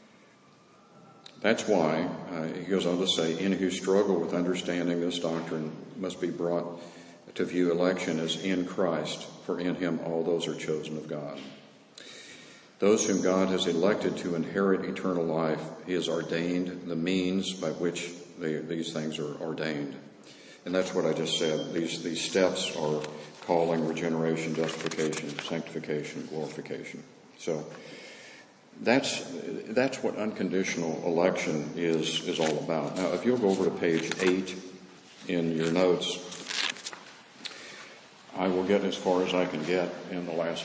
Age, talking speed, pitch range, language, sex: 50-69, 150 wpm, 80-90 Hz, English, male